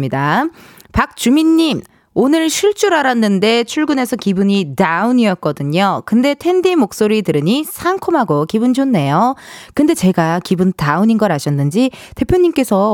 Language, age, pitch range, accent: Korean, 20-39, 195-320 Hz, native